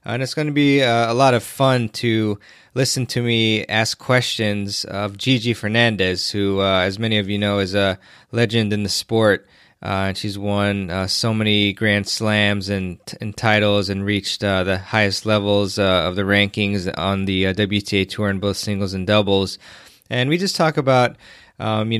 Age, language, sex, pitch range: 20-39, English, male, 100-120 Hz